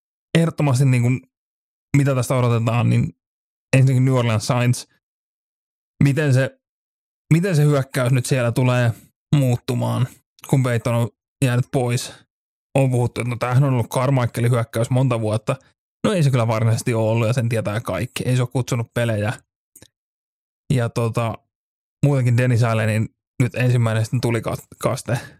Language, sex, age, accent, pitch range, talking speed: Finnish, male, 20-39, native, 120-135 Hz, 140 wpm